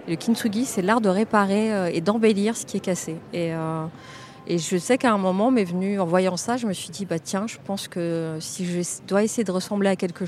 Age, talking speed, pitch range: 20-39, 240 wpm, 170-205 Hz